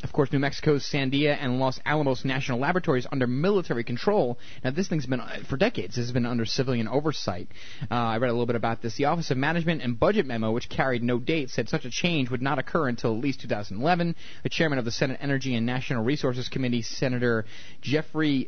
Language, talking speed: English, 220 wpm